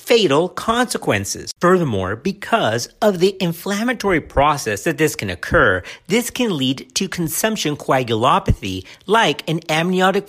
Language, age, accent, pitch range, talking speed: English, 50-69, American, 120-200 Hz, 120 wpm